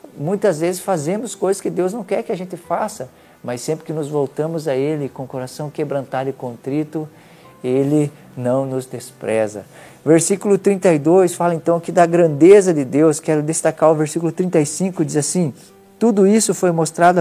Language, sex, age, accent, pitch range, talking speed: Portuguese, male, 50-69, Brazilian, 140-175 Hz, 170 wpm